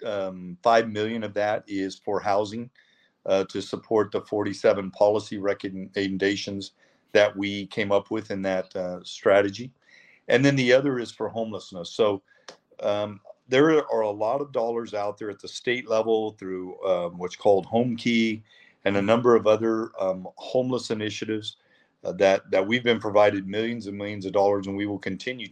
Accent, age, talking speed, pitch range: American, 50-69, 175 wpm, 100-115 Hz